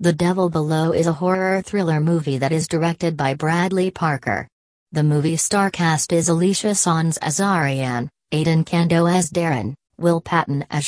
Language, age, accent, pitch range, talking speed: English, 40-59, American, 150-180 Hz, 165 wpm